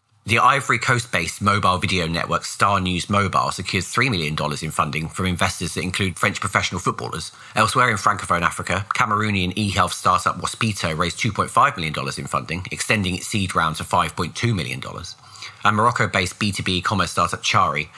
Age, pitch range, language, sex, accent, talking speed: 30-49, 90-110 Hz, English, male, British, 155 wpm